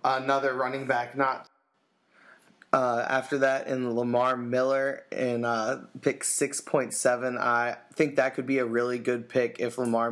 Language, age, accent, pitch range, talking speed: English, 20-39, American, 115-130 Hz, 150 wpm